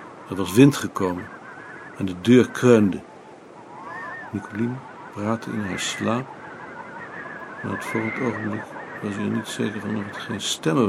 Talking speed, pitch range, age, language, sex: 150 wpm, 95-115 Hz, 60-79, Dutch, male